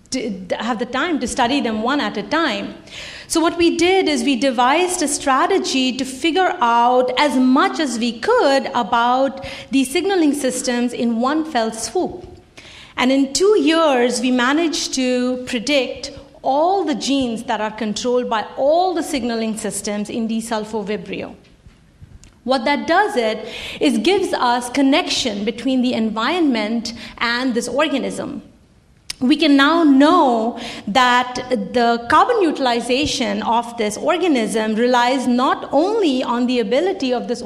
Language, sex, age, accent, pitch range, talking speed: English, female, 50-69, Indian, 235-300 Hz, 145 wpm